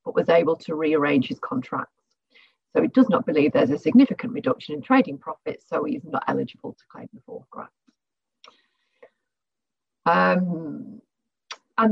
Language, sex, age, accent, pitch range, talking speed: English, female, 40-59, British, 170-250 Hz, 150 wpm